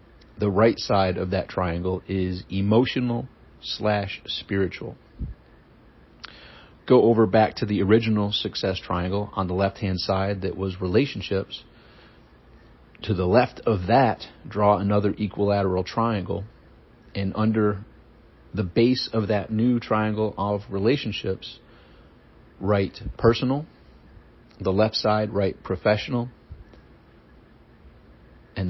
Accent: American